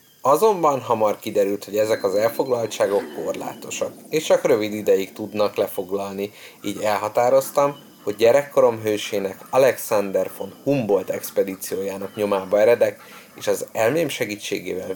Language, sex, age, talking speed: Hungarian, male, 30-49, 115 wpm